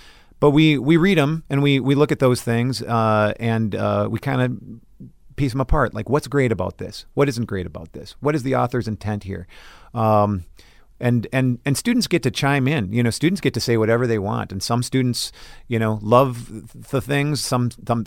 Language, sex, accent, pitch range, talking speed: English, male, American, 100-125 Hz, 215 wpm